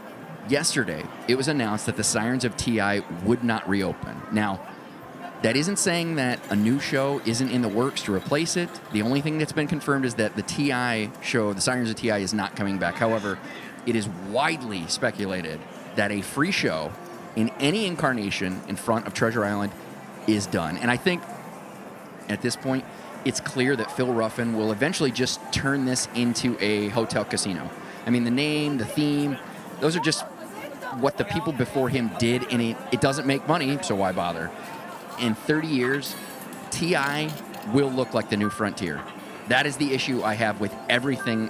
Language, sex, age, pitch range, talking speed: English, male, 30-49, 110-140 Hz, 185 wpm